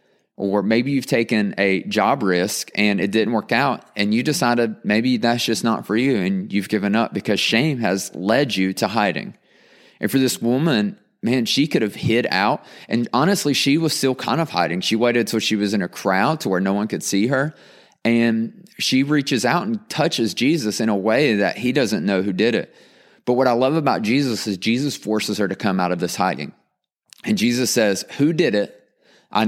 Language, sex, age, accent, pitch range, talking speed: English, male, 30-49, American, 100-125 Hz, 215 wpm